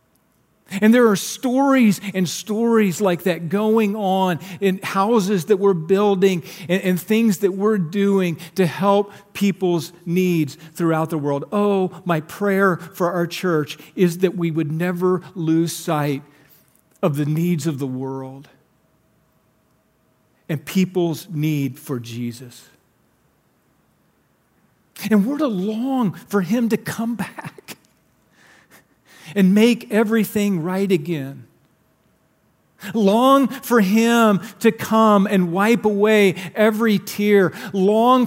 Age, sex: 40-59, male